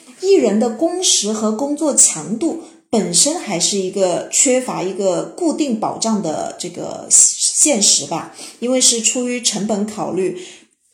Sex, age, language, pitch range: female, 30-49, Chinese, 185-245 Hz